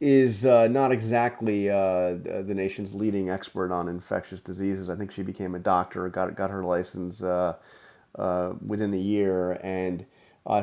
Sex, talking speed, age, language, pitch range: male, 165 wpm, 30-49, English, 90-110 Hz